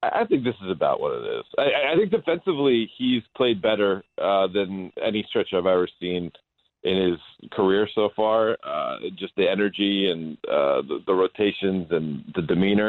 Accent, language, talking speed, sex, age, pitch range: American, English, 180 wpm, male, 30-49, 95-110 Hz